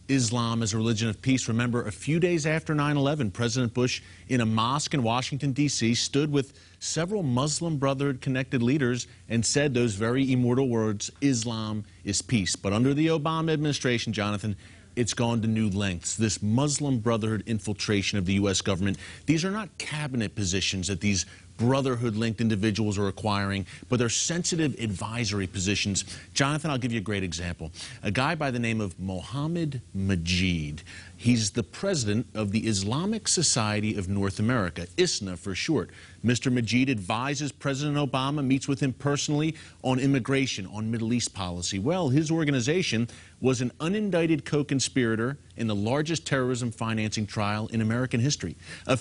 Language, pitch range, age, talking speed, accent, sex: English, 105-140 Hz, 30-49, 160 wpm, American, male